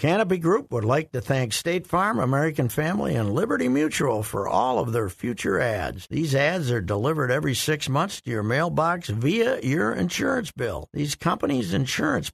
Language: English